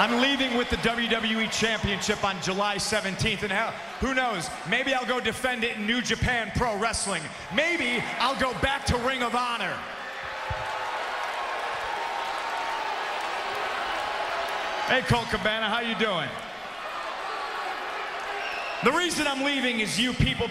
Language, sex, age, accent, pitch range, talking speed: English, male, 40-59, American, 215-260 Hz, 125 wpm